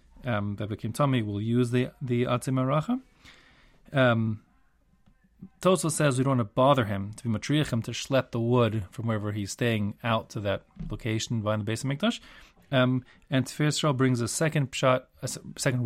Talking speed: 180 wpm